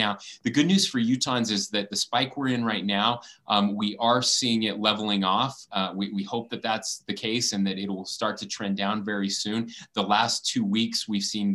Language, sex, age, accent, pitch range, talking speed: English, male, 30-49, American, 100-120 Hz, 235 wpm